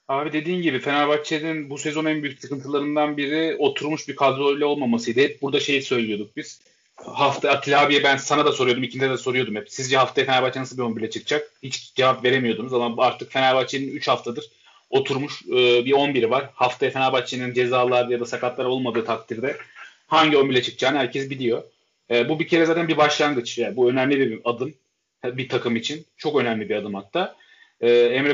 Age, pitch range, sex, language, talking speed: 30-49, 125-150 Hz, male, Turkish, 180 wpm